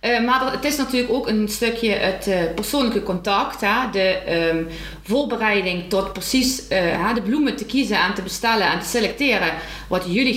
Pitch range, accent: 180-240 Hz, Dutch